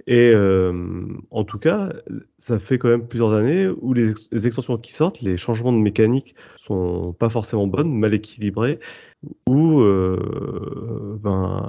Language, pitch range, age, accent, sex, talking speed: French, 100-130 Hz, 30-49, French, male, 160 wpm